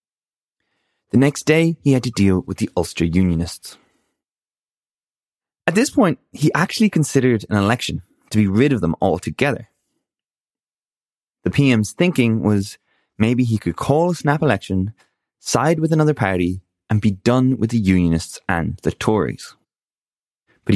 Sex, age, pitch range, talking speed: male, 20-39, 95-145 Hz, 145 wpm